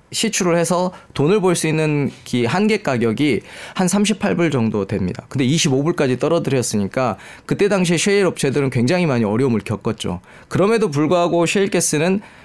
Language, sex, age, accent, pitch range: Korean, male, 20-39, native, 130-200 Hz